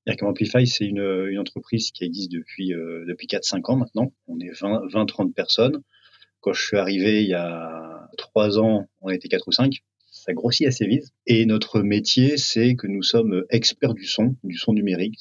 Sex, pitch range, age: male, 90-120 Hz, 40-59